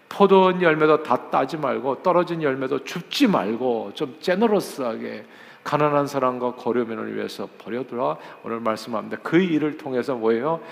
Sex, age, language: male, 50-69, Korean